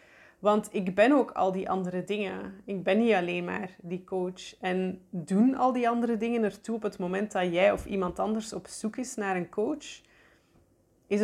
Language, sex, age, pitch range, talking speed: Dutch, female, 20-39, 185-210 Hz, 200 wpm